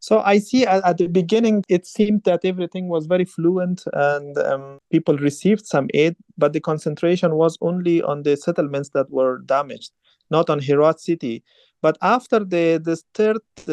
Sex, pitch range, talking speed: male, 145-180 Hz, 165 wpm